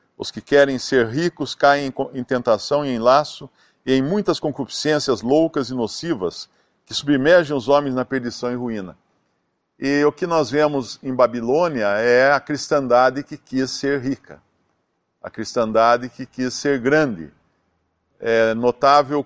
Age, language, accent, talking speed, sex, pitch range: 50-69, Portuguese, Brazilian, 150 wpm, male, 115-150 Hz